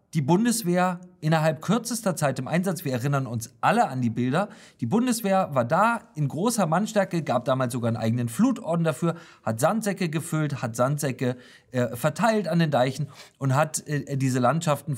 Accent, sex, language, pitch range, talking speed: German, male, German, 140-195 Hz, 170 wpm